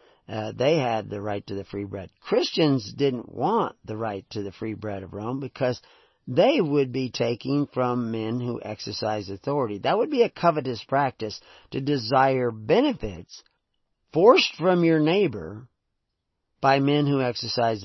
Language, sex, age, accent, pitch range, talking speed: English, male, 50-69, American, 105-135 Hz, 160 wpm